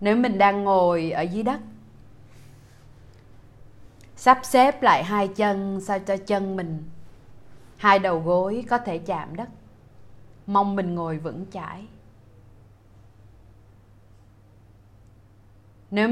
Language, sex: Vietnamese, female